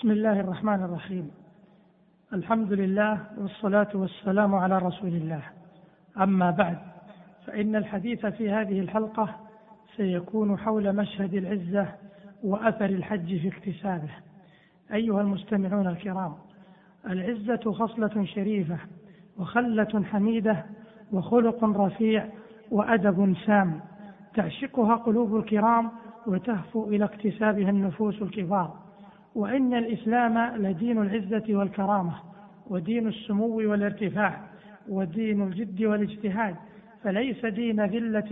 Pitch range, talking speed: 195-220 Hz, 95 wpm